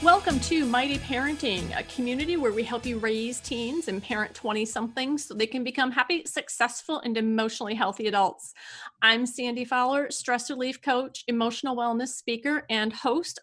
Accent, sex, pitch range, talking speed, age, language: American, female, 220-270 Hz, 160 wpm, 30-49, English